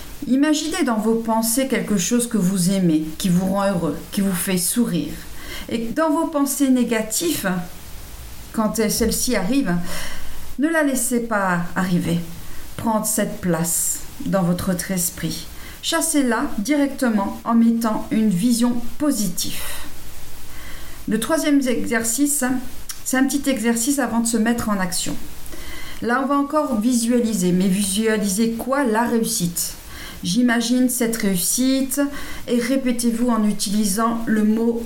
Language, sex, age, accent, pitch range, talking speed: French, female, 50-69, French, 195-245 Hz, 135 wpm